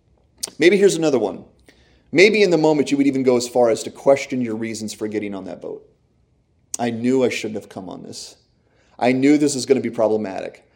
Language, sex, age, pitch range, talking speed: English, male, 30-49, 115-155 Hz, 225 wpm